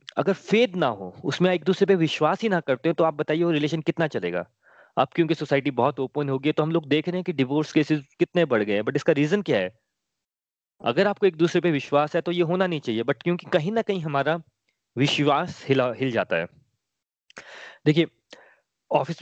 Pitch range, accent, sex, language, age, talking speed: 125-170 Hz, native, male, Hindi, 30-49, 215 wpm